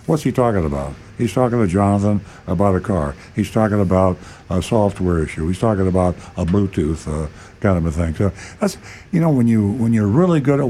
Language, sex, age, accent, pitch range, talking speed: English, male, 60-79, American, 95-115 Hz, 225 wpm